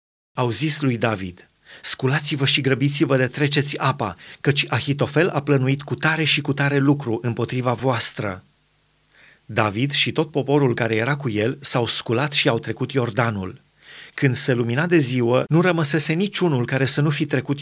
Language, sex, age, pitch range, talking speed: Romanian, male, 30-49, 120-145 Hz, 165 wpm